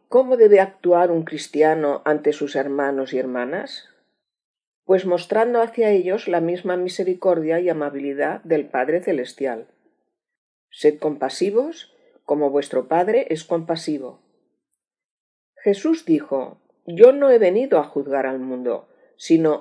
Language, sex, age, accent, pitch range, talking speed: Spanish, female, 50-69, Spanish, 145-235 Hz, 120 wpm